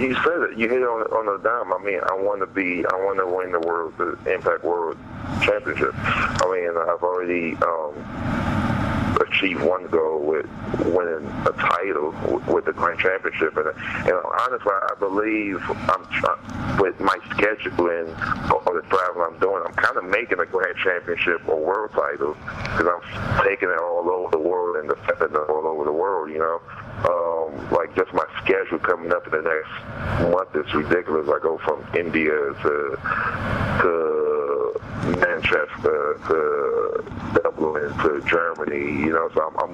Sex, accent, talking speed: male, American, 170 wpm